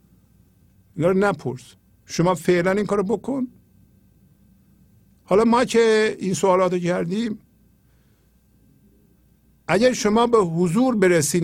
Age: 50-69